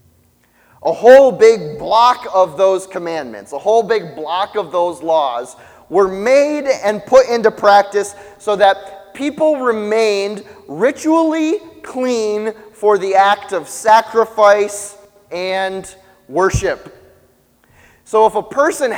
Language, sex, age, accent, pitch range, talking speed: English, male, 30-49, American, 185-215 Hz, 115 wpm